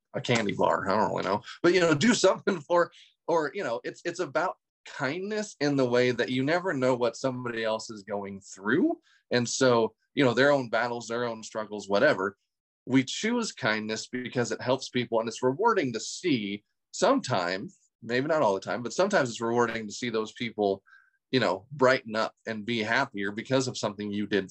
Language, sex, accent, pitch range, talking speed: English, male, American, 105-135 Hz, 200 wpm